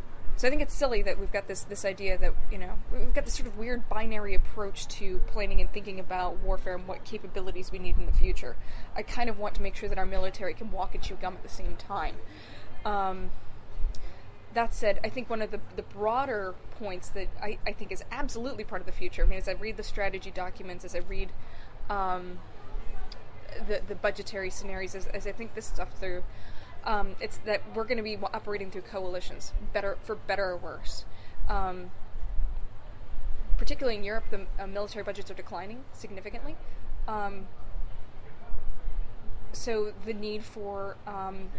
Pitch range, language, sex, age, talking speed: 180-210 Hz, English, female, 20-39, 190 wpm